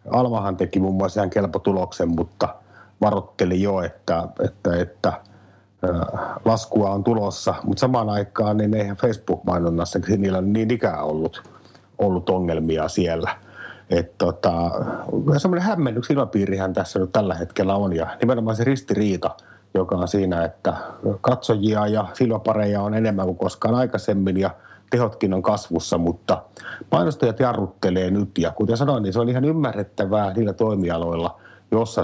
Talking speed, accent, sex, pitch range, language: 140 wpm, native, male, 90-115 Hz, Finnish